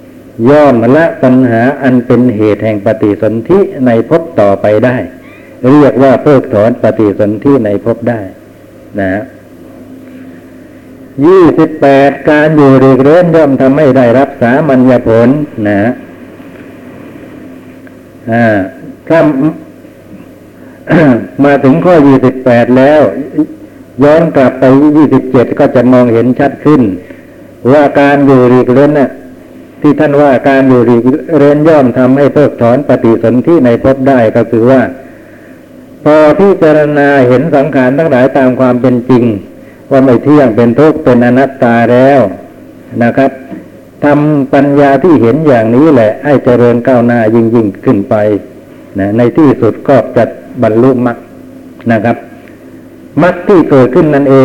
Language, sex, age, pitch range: Thai, male, 60-79, 120-145 Hz